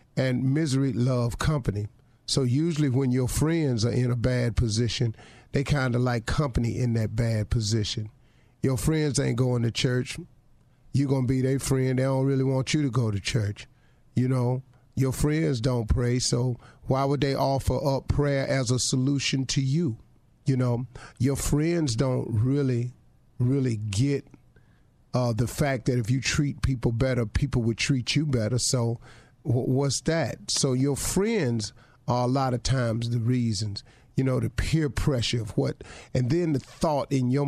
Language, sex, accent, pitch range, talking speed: English, male, American, 120-140 Hz, 175 wpm